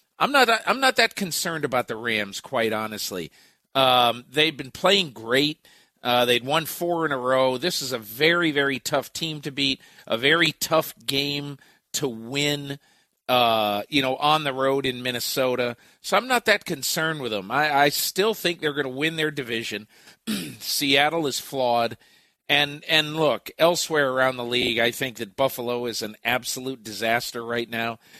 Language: English